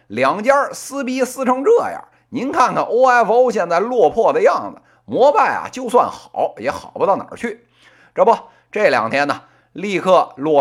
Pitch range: 200-290 Hz